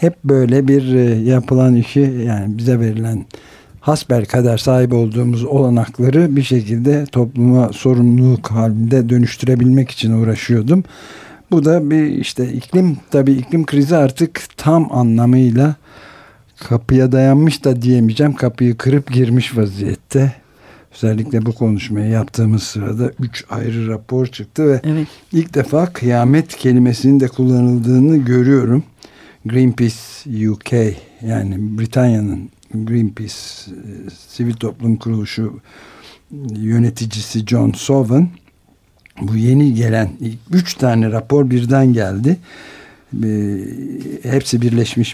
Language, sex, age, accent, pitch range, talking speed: Turkish, male, 60-79, native, 110-135 Hz, 100 wpm